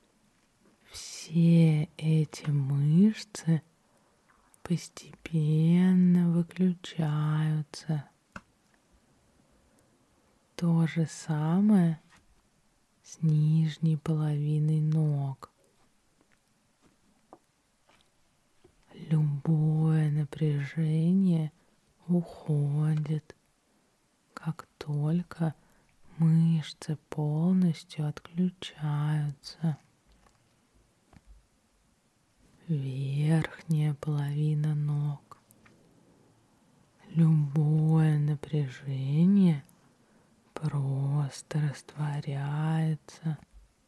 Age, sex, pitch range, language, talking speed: 20-39, female, 150-165 Hz, Russian, 35 wpm